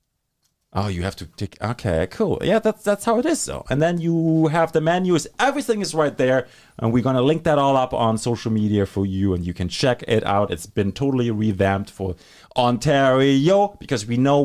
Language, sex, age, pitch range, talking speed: English, male, 30-49, 105-155 Hz, 215 wpm